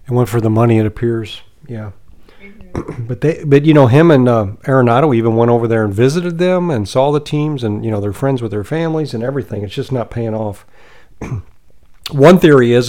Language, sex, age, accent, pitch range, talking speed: English, male, 50-69, American, 120-165 Hz, 220 wpm